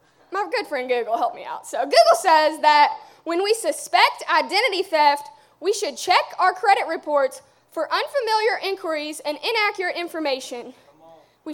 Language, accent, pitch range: English, American, 295-425 Hz